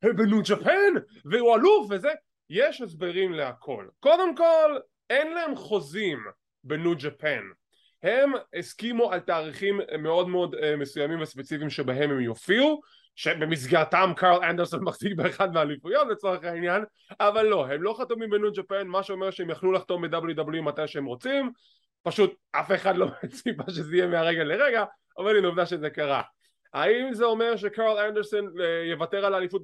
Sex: male